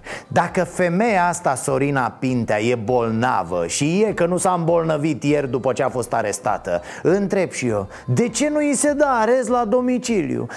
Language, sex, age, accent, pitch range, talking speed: Romanian, male, 30-49, native, 155-215 Hz, 175 wpm